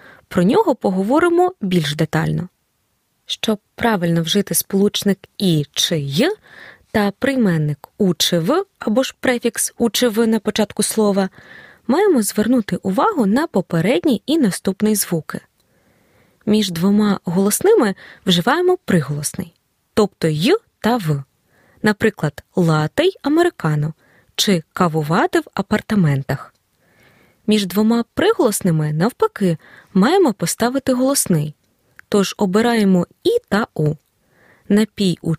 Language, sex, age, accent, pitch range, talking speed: Ukrainian, female, 20-39, native, 175-245 Hz, 100 wpm